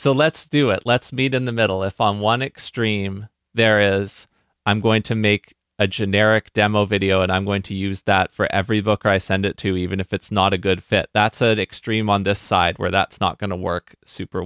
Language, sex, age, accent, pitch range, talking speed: English, male, 30-49, American, 100-115 Hz, 235 wpm